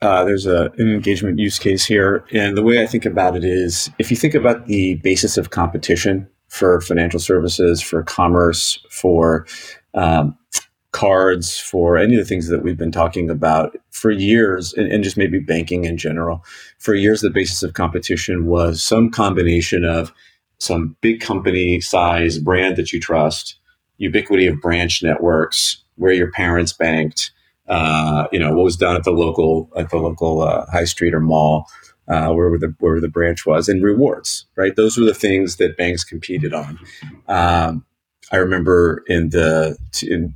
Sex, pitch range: male, 80-95 Hz